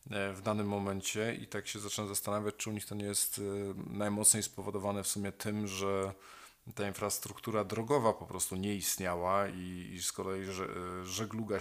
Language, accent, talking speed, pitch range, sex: Polish, native, 165 wpm, 95-105 Hz, male